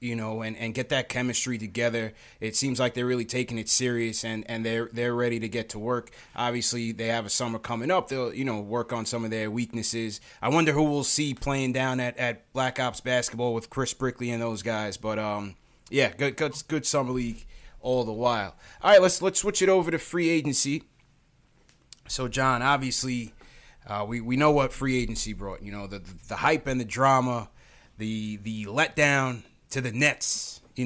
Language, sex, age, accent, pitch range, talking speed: English, male, 20-39, American, 115-145 Hz, 210 wpm